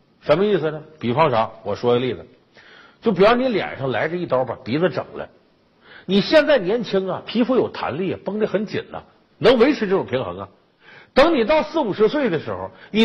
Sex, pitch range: male, 180-250 Hz